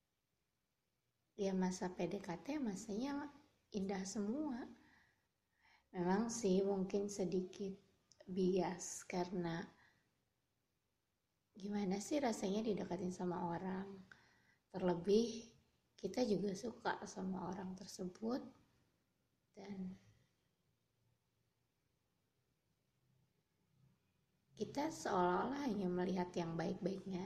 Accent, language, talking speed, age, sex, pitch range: native, Indonesian, 70 wpm, 20-39, female, 180-225 Hz